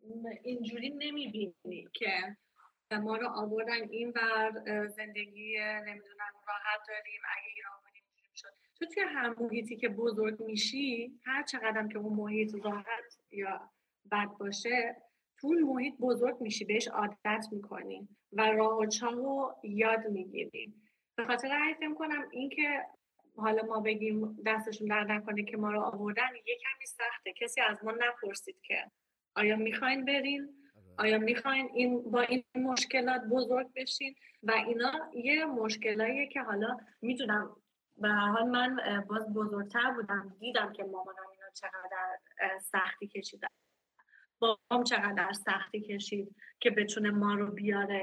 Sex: female